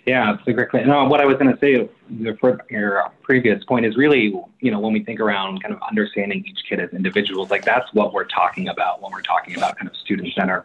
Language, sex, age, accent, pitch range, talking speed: English, male, 30-49, American, 100-135 Hz, 250 wpm